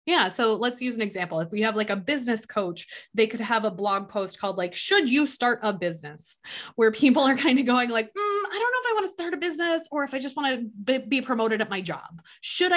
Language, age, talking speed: English, 20-39, 265 wpm